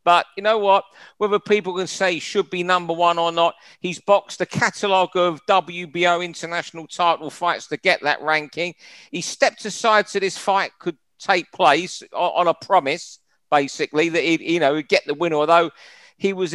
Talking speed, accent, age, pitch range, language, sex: 190 wpm, British, 50-69, 150-180 Hz, English, male